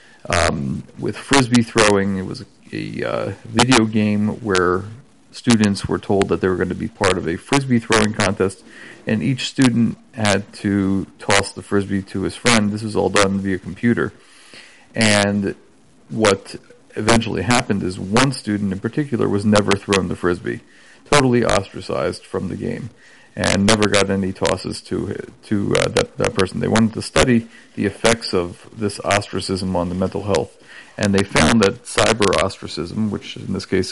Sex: male